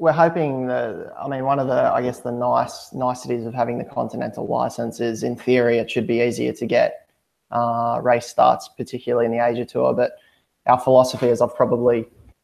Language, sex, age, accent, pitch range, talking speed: English, male, 20-39, Australian, 120-125 Hz, 200 wpm